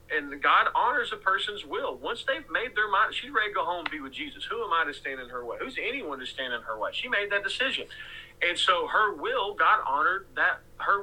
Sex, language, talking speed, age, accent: male, English, 255 wpm, 40-59, American